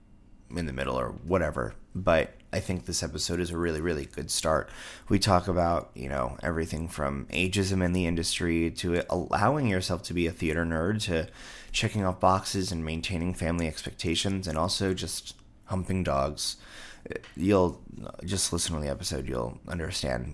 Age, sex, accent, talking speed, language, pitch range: 30-49, male, American, 165 wpm, English, 85-100 Hz